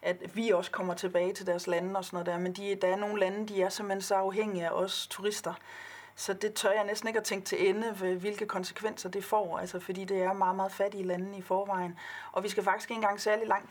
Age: 30-49